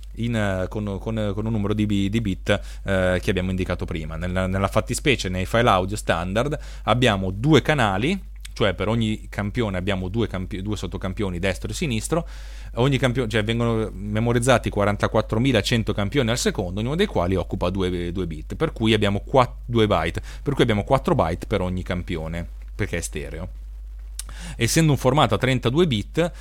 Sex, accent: male, native